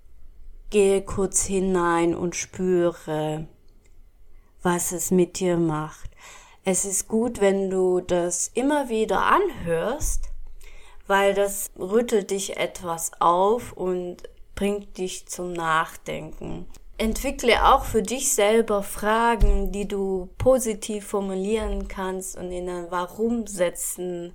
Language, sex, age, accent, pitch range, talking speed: German, female, 20-39, German, 170-210 Hz, 115 wpm